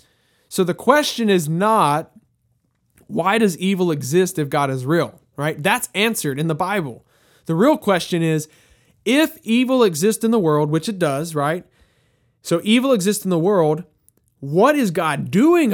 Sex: male